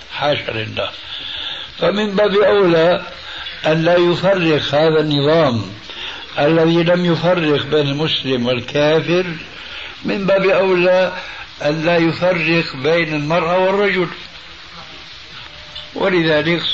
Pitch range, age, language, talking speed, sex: 145-180 Hz, 60-79, Arabic, 85 wpm, male